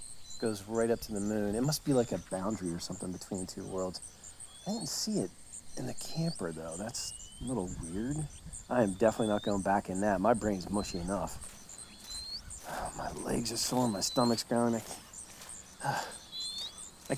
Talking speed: 185 wpm